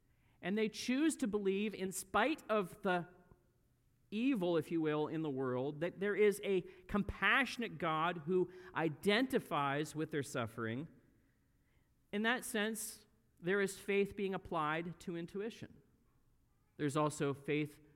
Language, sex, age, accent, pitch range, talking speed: English, male, 40-59, American, 135-195 Hz, 135 wpm